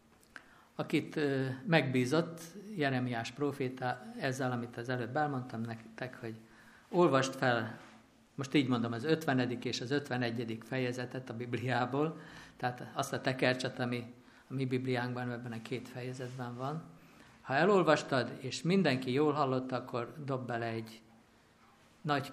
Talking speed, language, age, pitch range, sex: 130 wpm, Hungarian, 50-69, 120-135 Hz, male